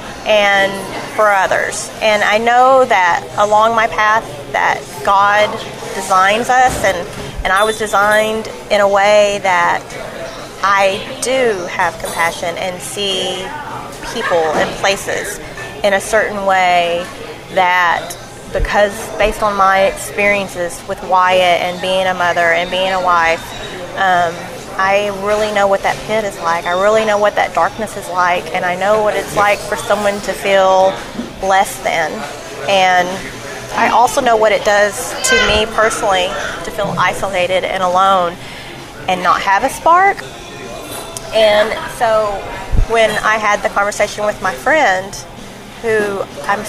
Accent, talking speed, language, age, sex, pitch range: American, 145 wpm, English, 30-49, female, 185-215 Hz